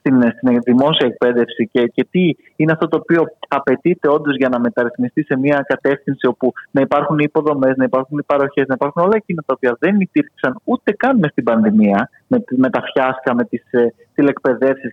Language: Greek